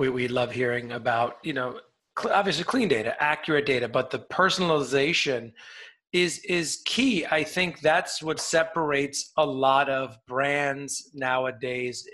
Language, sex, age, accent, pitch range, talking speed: English, male, 30-49, American, 135-175 Hz, 145 wpm